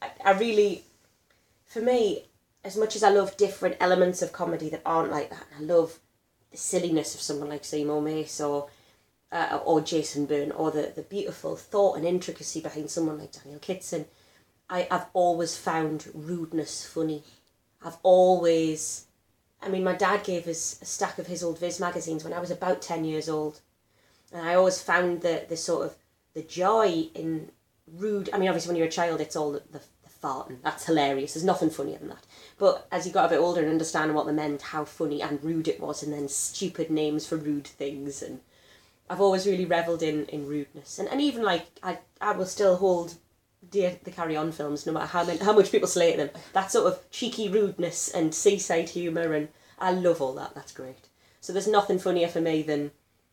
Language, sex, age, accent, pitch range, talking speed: English, female, 20-39, British, 150-185 Hz, 195 wpm